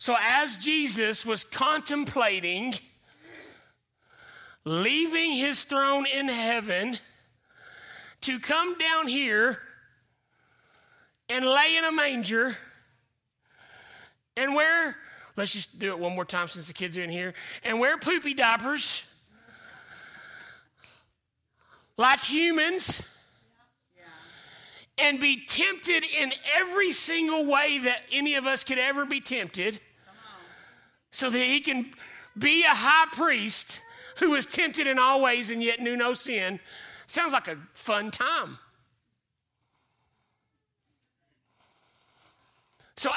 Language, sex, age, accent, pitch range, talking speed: English, male, 40-59, American, 215-315 Hz, 110 wpm